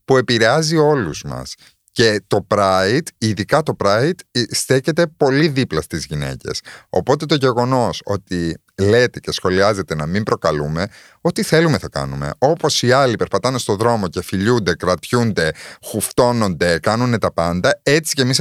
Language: Greek